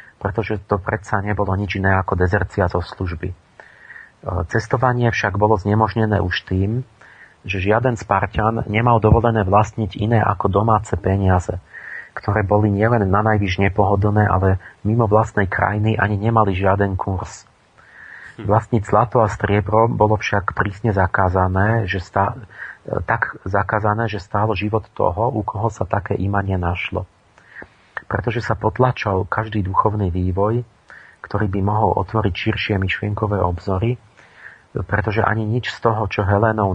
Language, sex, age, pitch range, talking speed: Slovak, male, 40-59, 95-110 Hz, 130 wpm